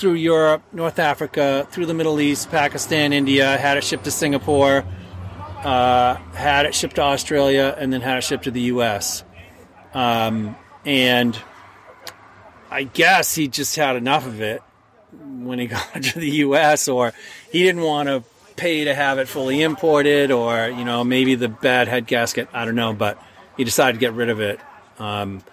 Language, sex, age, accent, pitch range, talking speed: English, male, 40-59, American, 120-145 Hz, 180 wpm